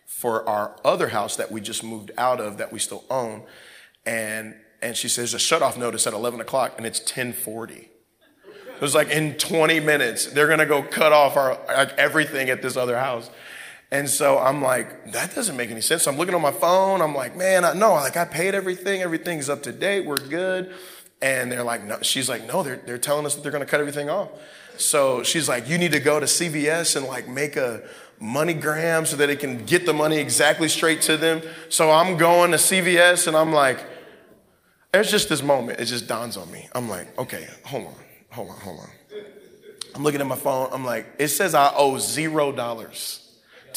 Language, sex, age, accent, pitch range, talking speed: English, male, 30-49, American, 130-170 Hz, 215 wpm